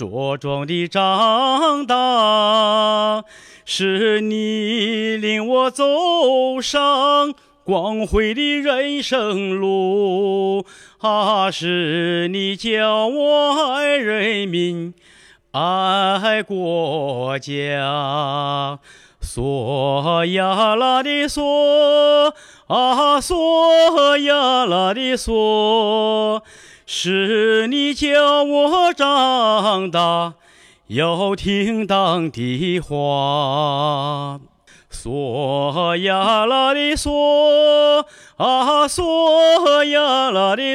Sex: male